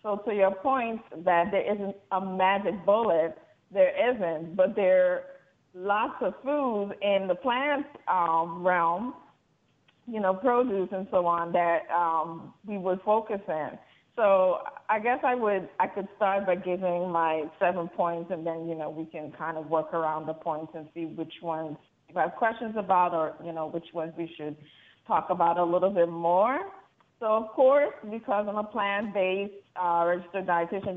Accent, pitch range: American, 170-200 Hz